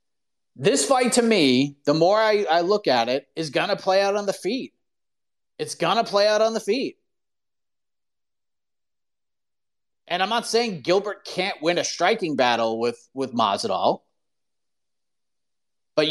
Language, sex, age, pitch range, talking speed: English, male, 30-49, 145-210 Hz, 155 wpm